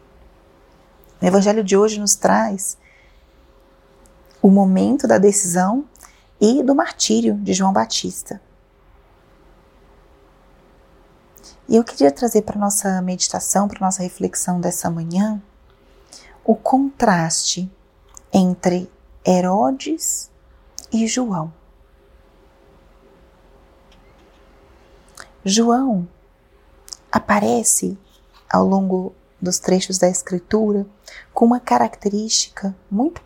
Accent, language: Brazilian, Portuguese